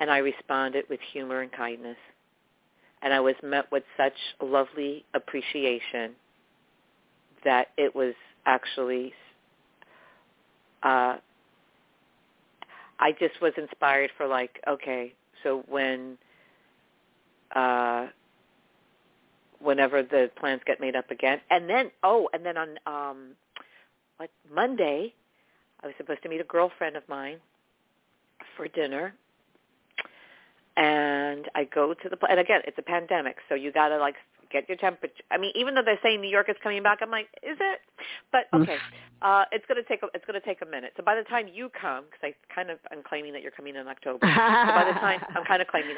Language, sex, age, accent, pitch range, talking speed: English, female, 50-69, American, 135-175 Hz, 165 wpm